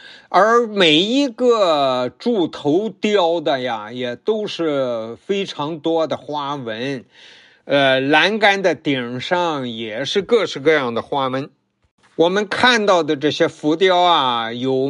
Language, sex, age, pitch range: Chinese, male, 50-69, 135-185 Hz